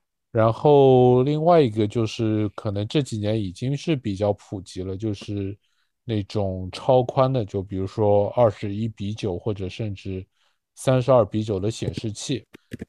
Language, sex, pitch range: Chinese, male, 100-115 Hz